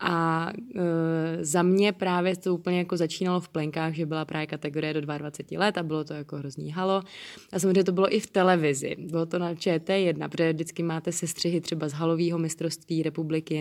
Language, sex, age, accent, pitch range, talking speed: Czech, female, 20-39, native, 165-195 Hz, 195 wpm